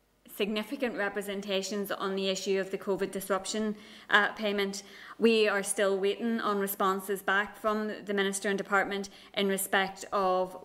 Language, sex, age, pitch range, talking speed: English, female, 20-39, 190-205 Hz, 145 wpm